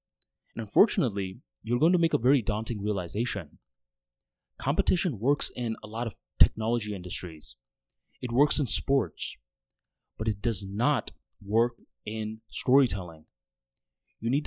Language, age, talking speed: English, 20-39, 130 wpm